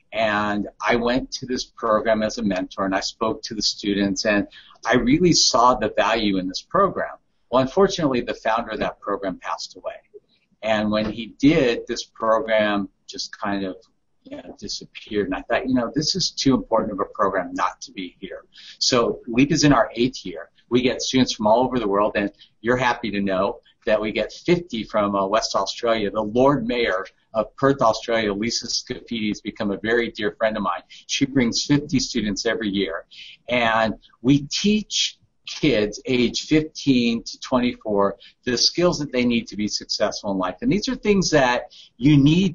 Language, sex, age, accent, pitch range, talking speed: English, male, 50-69, American, 105-145 Hz, 190 wpm